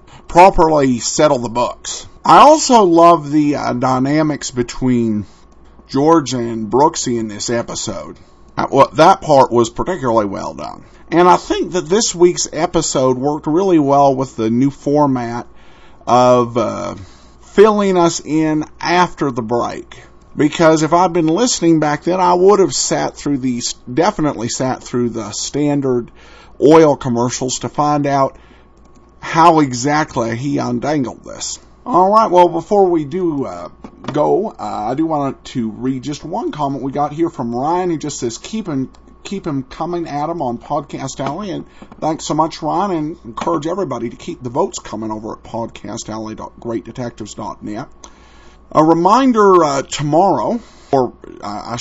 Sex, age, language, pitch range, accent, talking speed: male, 50-69, English, 120-170 Hz, American, 155 wpm